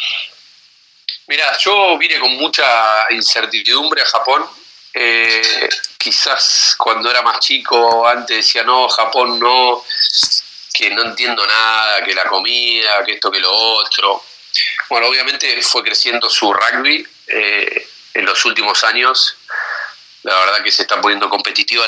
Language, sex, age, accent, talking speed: Spanish, male, 30-49, Argentinian, 135 wpm